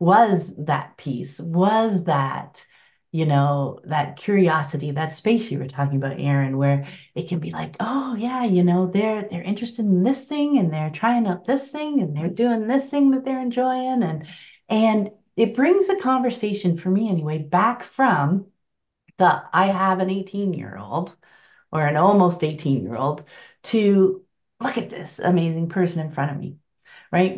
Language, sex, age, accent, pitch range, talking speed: English, female, 30-49, American, 165-225 Hz, 175 wpm